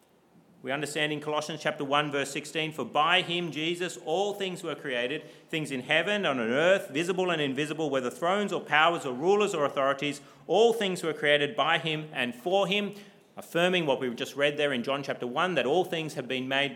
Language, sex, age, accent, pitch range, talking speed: English, male, 40-59, Australian, 140-190 Hz, 210 wpm